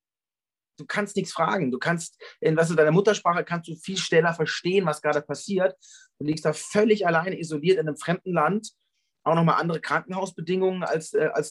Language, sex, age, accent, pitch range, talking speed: German, male, 30-49, German, 145-190 Hz, 180 wpm